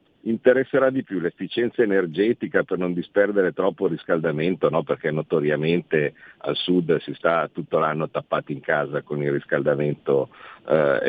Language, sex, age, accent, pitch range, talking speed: Italian, male, 50-69, native, 80-100 Hz, 145 wpm